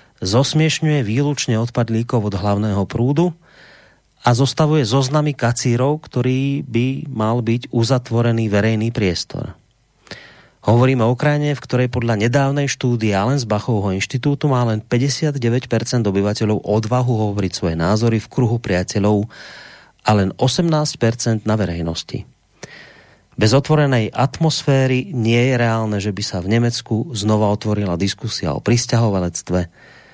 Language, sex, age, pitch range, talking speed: Slovak, male, 30-49, 105-135 Hz, 120 wpm